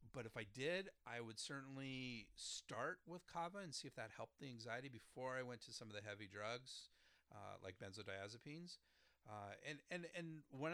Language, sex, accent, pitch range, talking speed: English, male, American, 100-135 Hz, 190 wpm